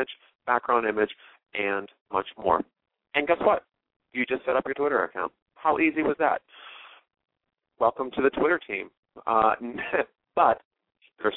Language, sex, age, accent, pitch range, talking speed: English, male, 40-59, American, 110-135 Hz, 135 wpm